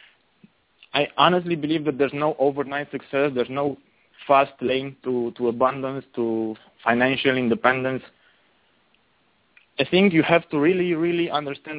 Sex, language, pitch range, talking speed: male, English, 130-155 Hz, 130 wpm